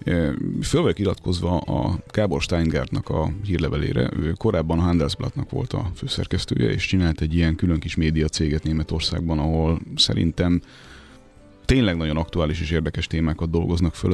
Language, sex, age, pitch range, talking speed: Hungarian, male, 30-49, 75-90 Hz, 140 wpm